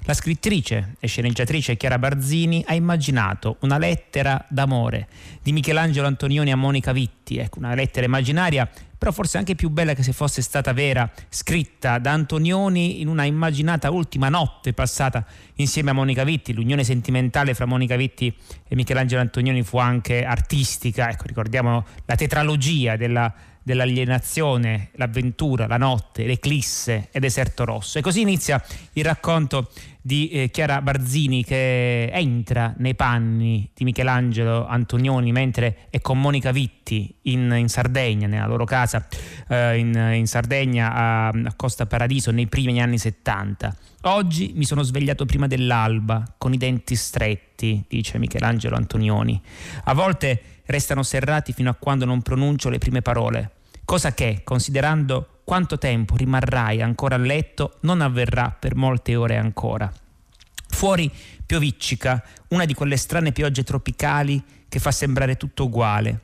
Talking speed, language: 145 wpm, Italian